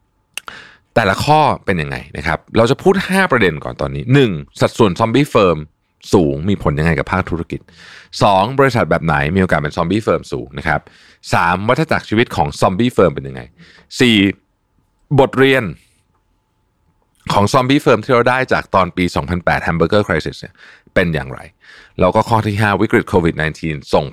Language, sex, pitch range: Thai, male, 80-115 Hz